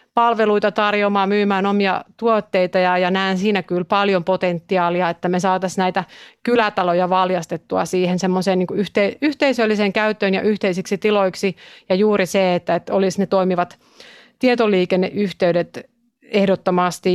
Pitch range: 185-225 Hz